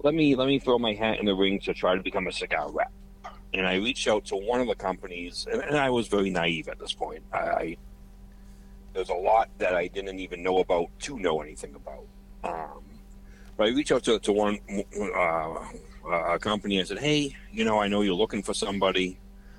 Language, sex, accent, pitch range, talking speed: English, male, American, 90-105 Hz, 220 wpm